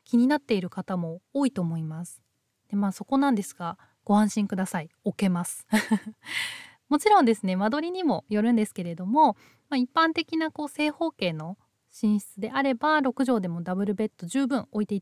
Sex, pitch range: female, 185-275 Hz